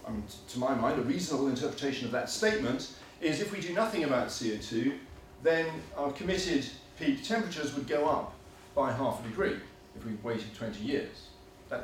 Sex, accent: male, British